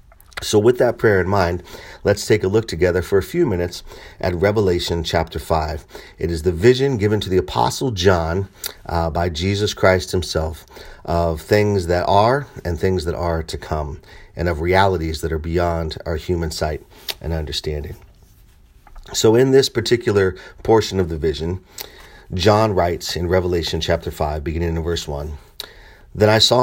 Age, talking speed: 40-59, 170 wpm